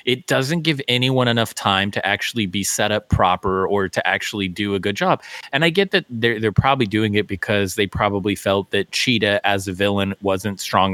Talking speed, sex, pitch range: 215 wpm, male, 100-115 Hz